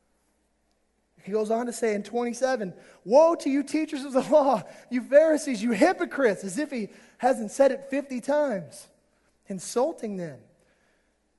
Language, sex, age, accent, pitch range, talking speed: English, male, 30-49, American, 210-280 Hz, 150 wpm